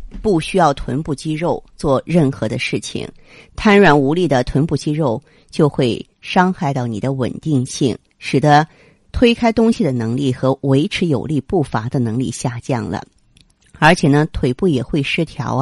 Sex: female